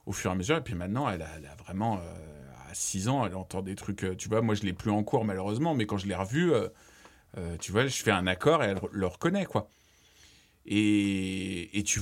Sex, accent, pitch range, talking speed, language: male, French, 95-115 Hz, 255 wpm, French